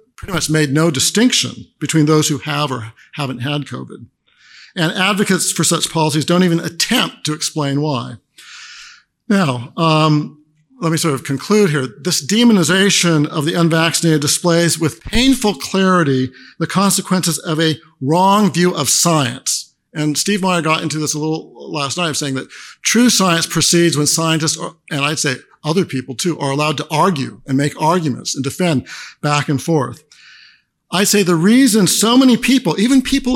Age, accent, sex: 50-69, American, male